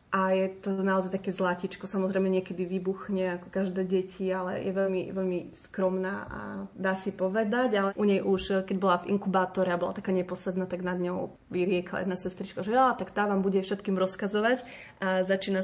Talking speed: 190 wpm